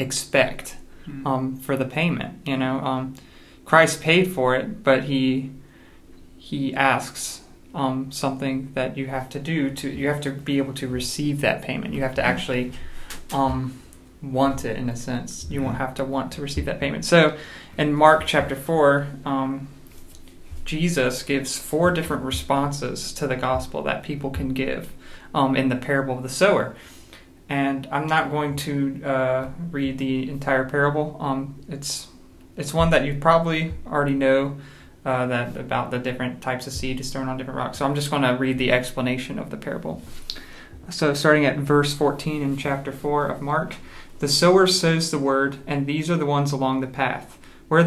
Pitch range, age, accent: 130-145 Hz, 30-49, American